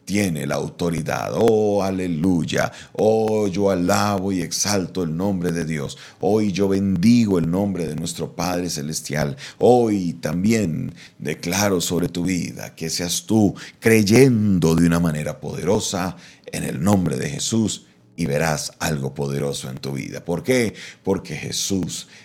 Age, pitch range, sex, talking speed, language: 40-59, 80-100 Hz, male, 145 wpm, Spanish